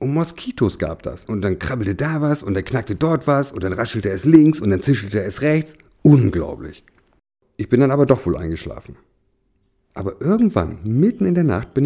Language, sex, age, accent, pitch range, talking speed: German, male, 50-69, German, 95-135 Hz, 195 wpm